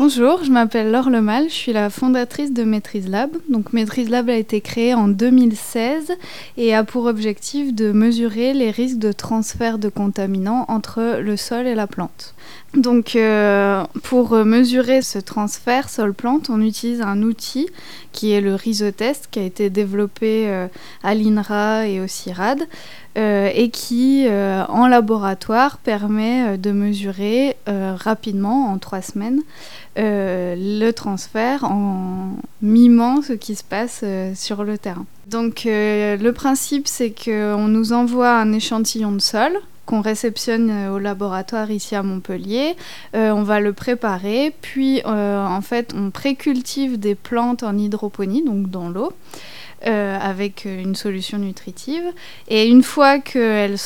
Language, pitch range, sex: French, 200-245 Hz, female